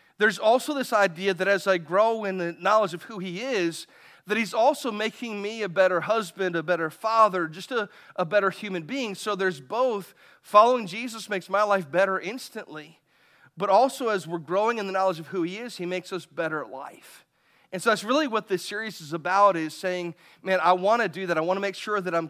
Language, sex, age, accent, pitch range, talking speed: English, male, 40-59, American, 170-210 Hz, 225 wpm